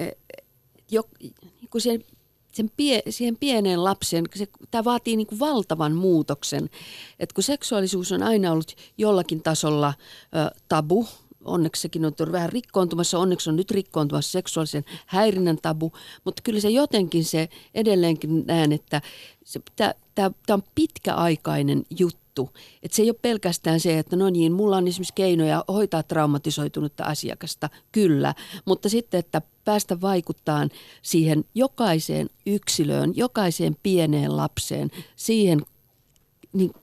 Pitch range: 155-195 Hz